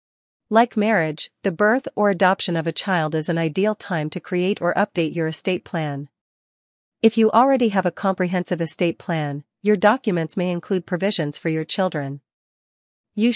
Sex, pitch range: female, 160-200 Hz